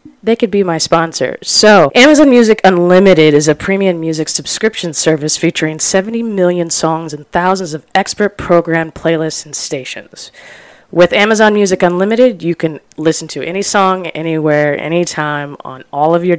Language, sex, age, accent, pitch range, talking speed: English, female, 20-39, American, 150-185 Hz, 155 wpm